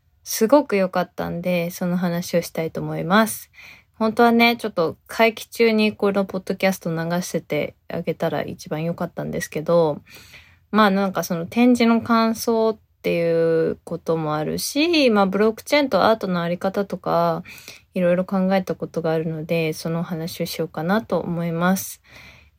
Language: Japanese